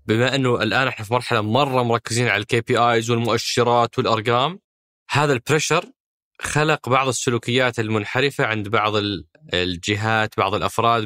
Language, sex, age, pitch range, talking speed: Arabic, male, 20-39, 105-150 Hz, 135 wpm